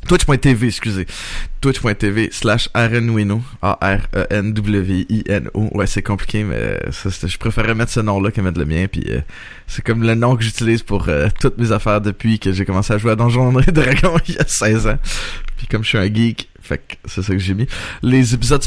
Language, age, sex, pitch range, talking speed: French, 20-39, male, 100-130 Hz, 205 wpm